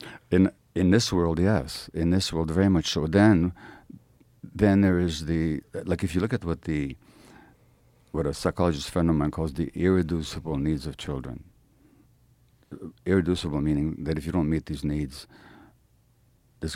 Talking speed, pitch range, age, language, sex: 160 wpm, 80-100 Hz, 50-69, English, male